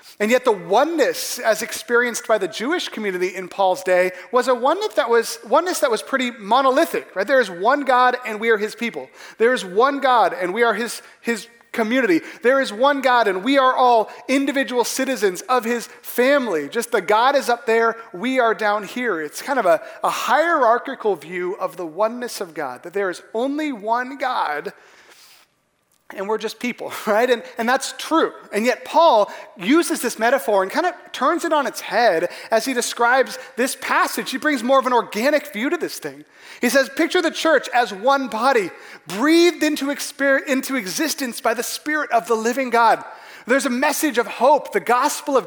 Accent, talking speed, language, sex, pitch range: American, 200 wpm, English, male, 230-290 Hz